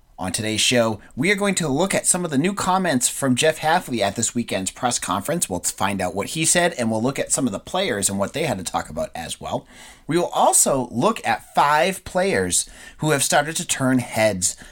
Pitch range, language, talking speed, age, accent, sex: 95-145 Hz, English, 235 wpm, 30-49, American, male